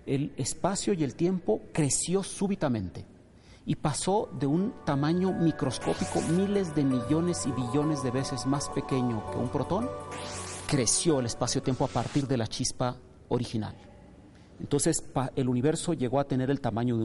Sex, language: male, Spanish